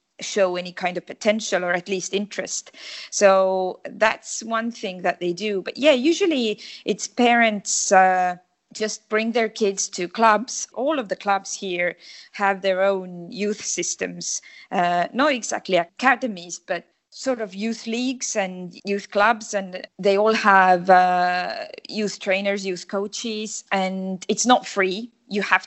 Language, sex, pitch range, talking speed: English, female, 175-210 Hz, 150 wpm